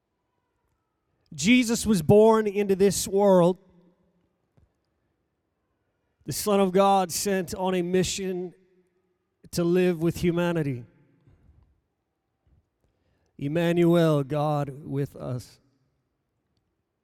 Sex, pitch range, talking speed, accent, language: male, 120-190 Hz, 80 wpm, American, English